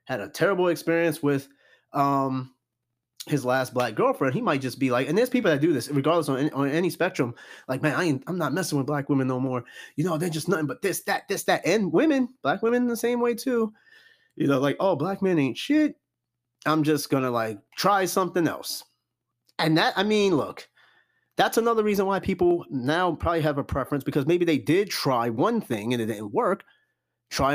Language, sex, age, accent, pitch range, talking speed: English, male, 30-49, American, 135-205 Hz, 220 wpm